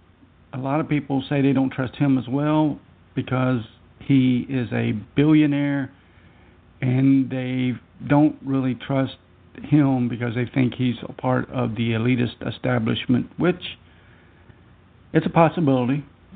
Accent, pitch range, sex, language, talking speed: American, 90-135 Hz, male, English, 130 wpm